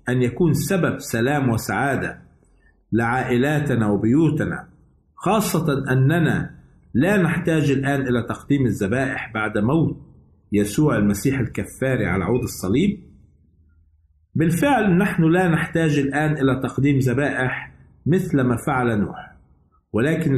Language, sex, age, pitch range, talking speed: Arabic, male, 50-69, 125-160 Hz, 105 wpm